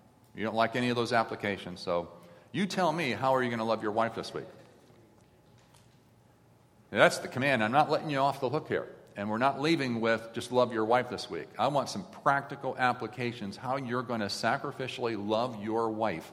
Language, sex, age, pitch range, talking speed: English, male, 40-59, 110-140 Hz, 210 wpm